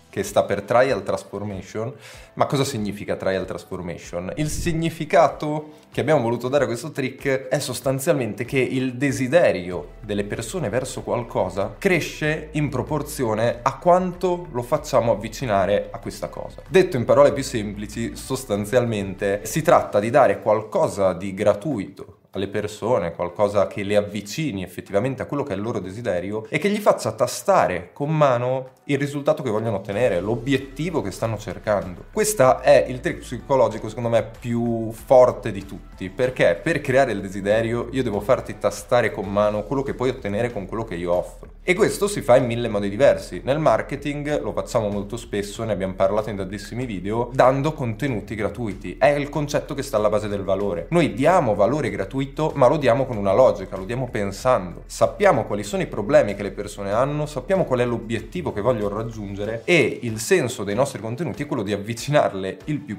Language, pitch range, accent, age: Italian, 100-135 Hz, native, 20-39